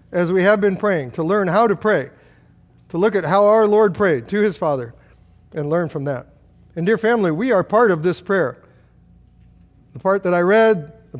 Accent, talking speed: American, 210 wpm